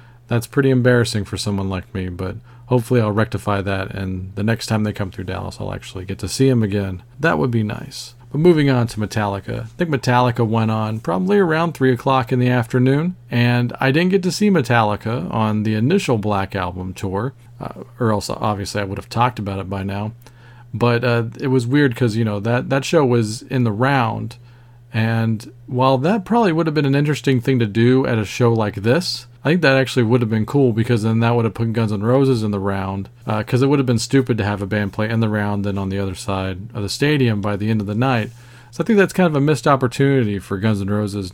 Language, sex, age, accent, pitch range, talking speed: English, male, 40-59, American, 105-130 Hz, 240 wpm